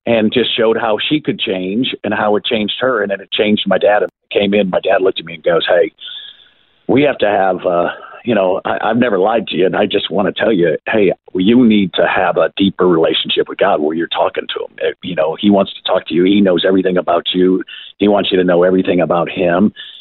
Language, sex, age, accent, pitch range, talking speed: English, male, 50-69, American, 95-115 Hz, 250 wpm